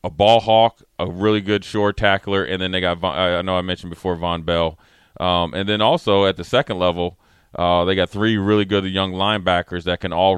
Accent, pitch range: American, 85-100 Hz